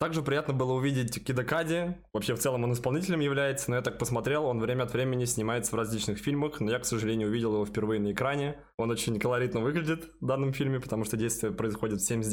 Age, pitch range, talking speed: 20-39, 110-145 Hz, 225 wpm